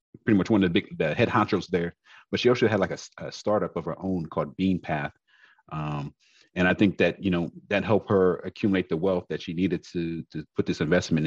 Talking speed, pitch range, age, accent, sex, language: 240 wpm, 80-95 Hz, 40-59, American, male, English